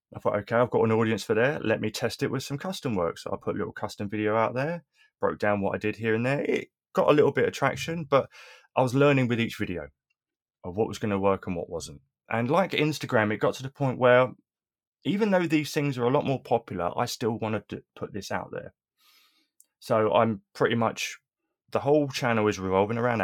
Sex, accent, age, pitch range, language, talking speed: male, British, 20-39, 100-130 Hz, English, 240 wpm